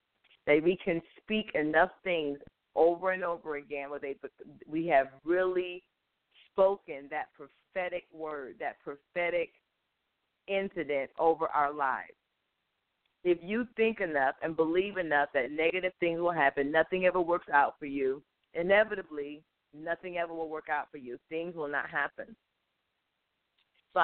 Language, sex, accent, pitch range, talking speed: English, female, American, 150-195 Hz, 135 wpm